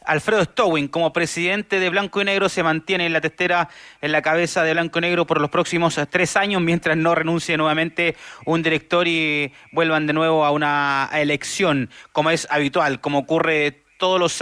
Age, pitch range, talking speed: 30-49, 145-175 Hz, 185 wpm